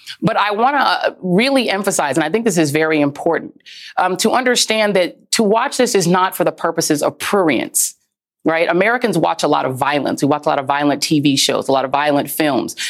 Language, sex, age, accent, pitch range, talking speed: English, female, 30-49, American, 160-220 Hz, 220 wpm